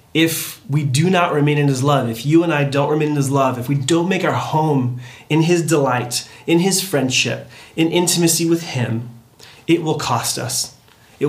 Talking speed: 200 wpm